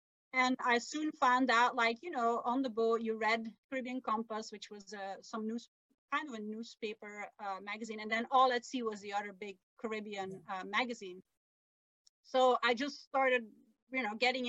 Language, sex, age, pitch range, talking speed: English, female, 30-49, 215-255 Hz, 185 wpm